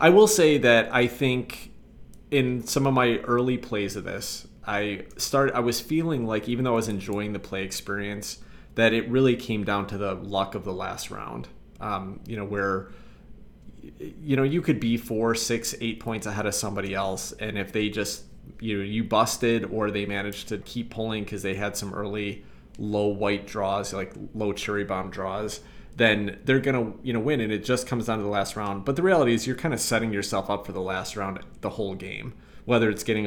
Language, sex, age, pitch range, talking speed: English, male, 30-49, 100-115 Hz, 215 wpm